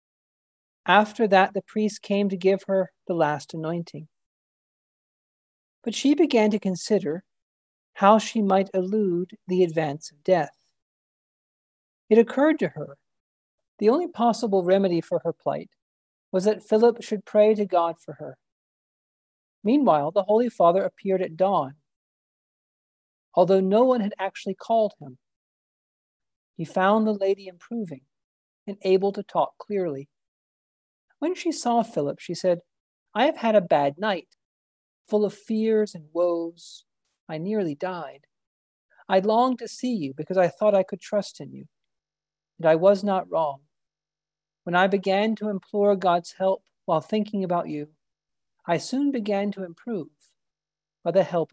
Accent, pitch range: American, 155-210 Hz